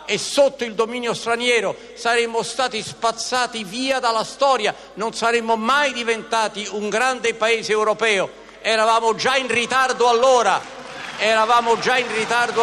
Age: 50-69